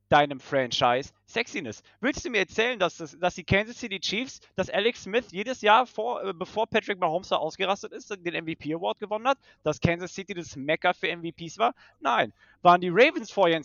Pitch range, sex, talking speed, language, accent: 140-200 Hz, male, 195 wpm, German, German